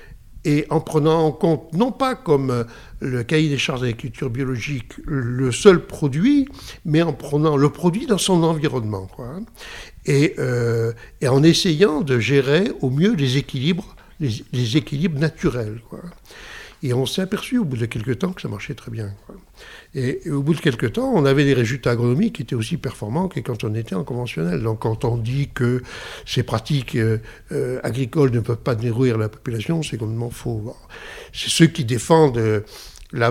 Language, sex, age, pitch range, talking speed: French, male, 60-79, 120-155 Hz, 185 wpm